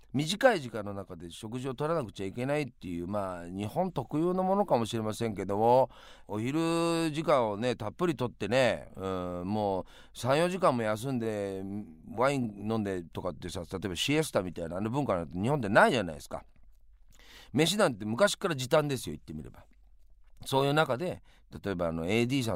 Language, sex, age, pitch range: Japanese, male, 40-59, 100-155 Hz